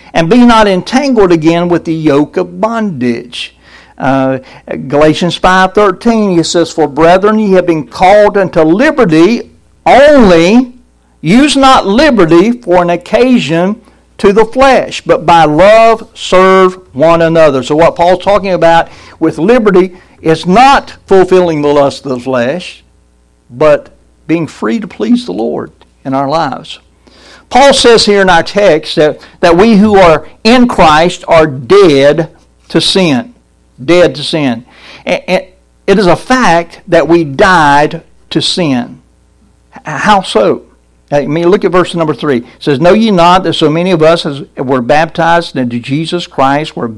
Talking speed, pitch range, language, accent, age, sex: 155 wpm, 150-200 Hz, English, American, 60-79, male